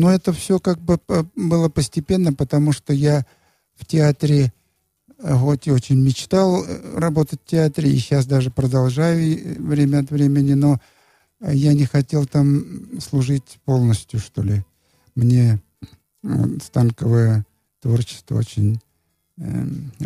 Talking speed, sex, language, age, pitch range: 115 wpm, male, Russian, 50-69, 110-150 Hz